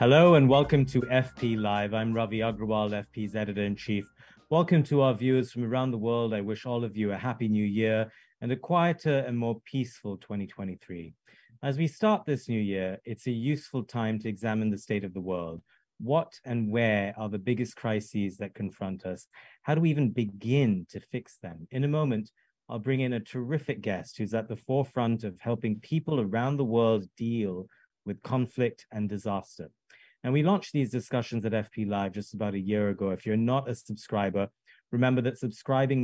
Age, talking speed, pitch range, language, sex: 30-49, 190 wpm, 105-125 Hz, English, male